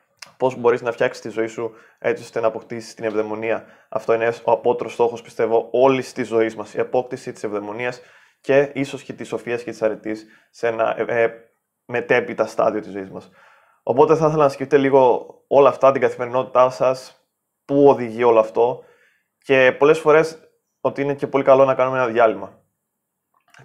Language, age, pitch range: Greek, 20-39, 110-130 Hz